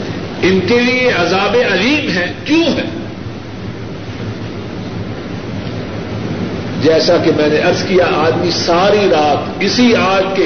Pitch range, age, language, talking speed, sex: 140-195 Hz, 50-69, Urdu, 115 wpm, male